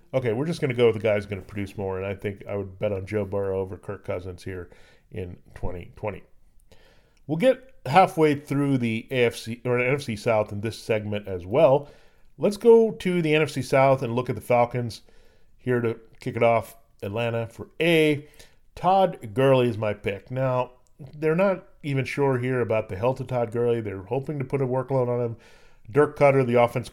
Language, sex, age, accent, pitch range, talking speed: English, male, 40-59, American, 110-130 Hz, 205 wpm